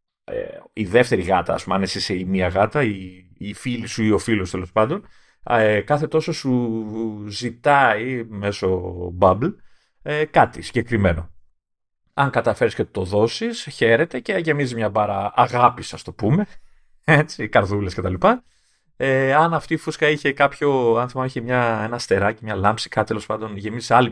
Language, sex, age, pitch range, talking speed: Greek, male, 30-49, 100-135 Hz, 155 wpm